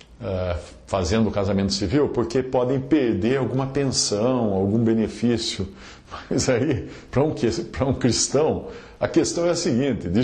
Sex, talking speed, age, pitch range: male, 135 wpm, 50-69, 105-155 Hz